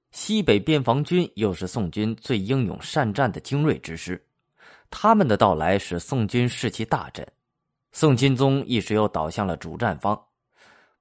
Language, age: Chinese, 20-39